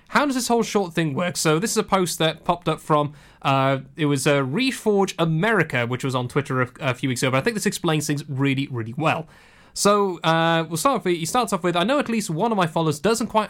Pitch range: 140-195 Hz